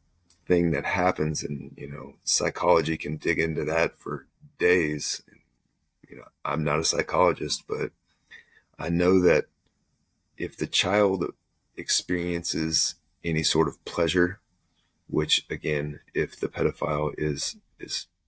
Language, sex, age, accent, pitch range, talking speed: English, male, 30-49, American, 75-90 Hz, 125 wpm